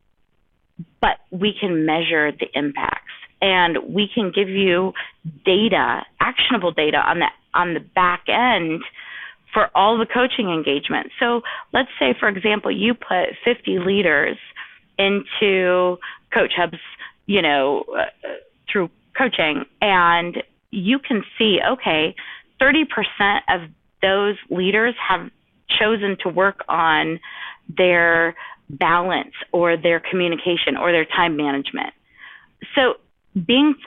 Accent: American